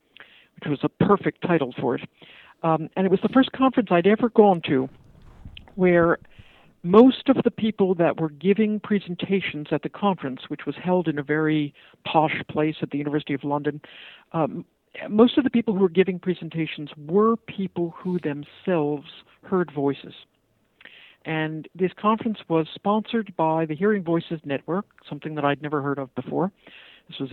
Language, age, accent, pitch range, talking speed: English, 60-79, American, 145-190 Hz, 170 wpm